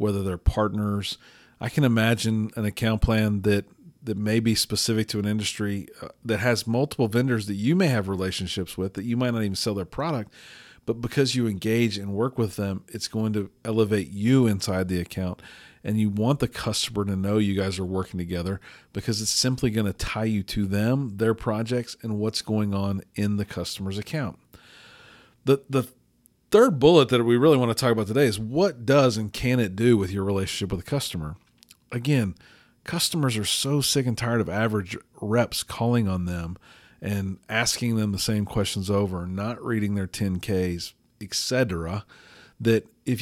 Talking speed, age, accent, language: 190 wpm, 40-59, American, English